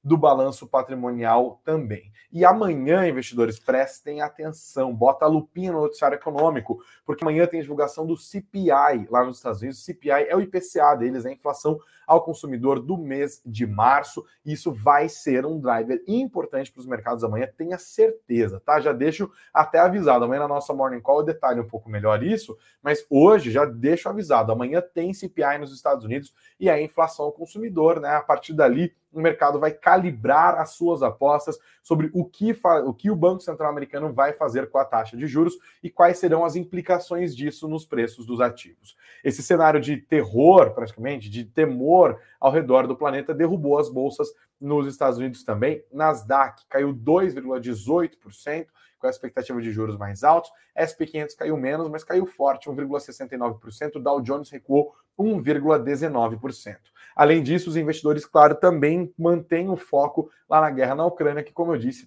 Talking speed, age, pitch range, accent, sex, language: 170 wpm, 20-39, 130-165 Hz, Brazilian, male, Portuguese